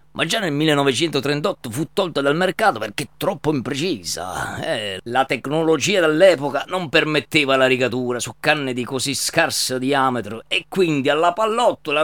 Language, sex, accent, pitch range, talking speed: Italian, male, native, 130-170 Hz, 145 wpm